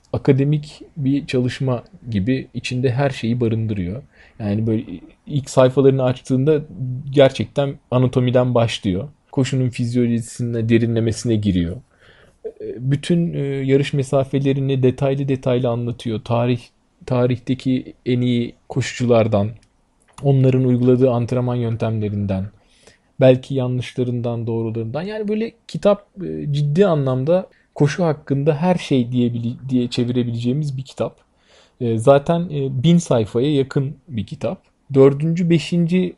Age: 40-59